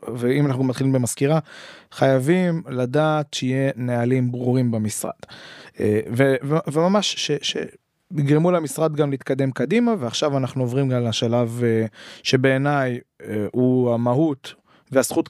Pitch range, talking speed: 130-160 Hz, 115 wpm